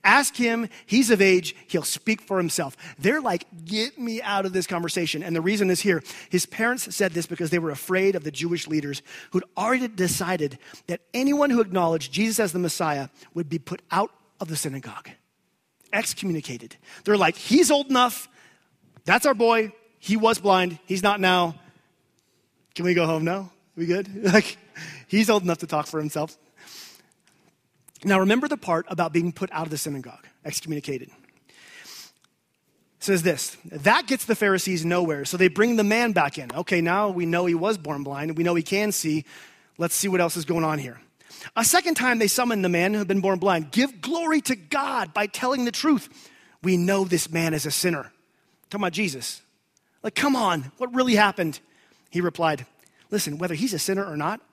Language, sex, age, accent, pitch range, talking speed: English, male, 30-49, American, 160-210 Hz, 195 wpm